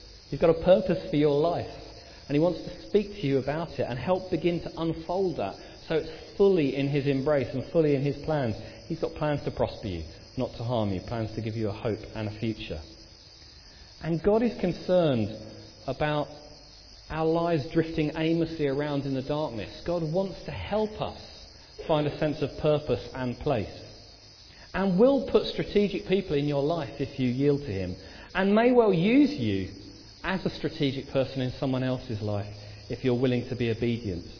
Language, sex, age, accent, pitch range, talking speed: English, male, 40-59, British, 110-155 Hz, 190 wpm